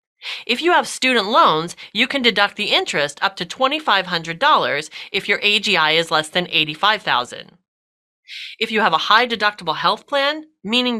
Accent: American